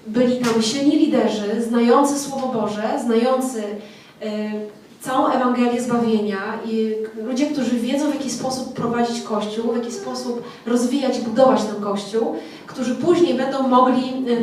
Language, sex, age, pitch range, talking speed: Polish, female, 20-39, 220-260 Hz, 140 wpm